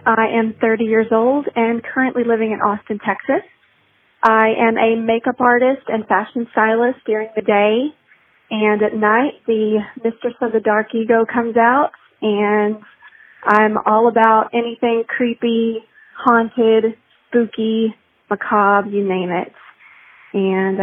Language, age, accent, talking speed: English, 30-49, American, 135 wpm